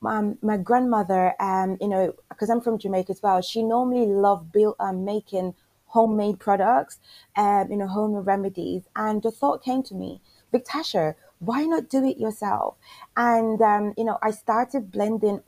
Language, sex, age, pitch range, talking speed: English, female, 20-39, 180-230 Hz, 165 wpm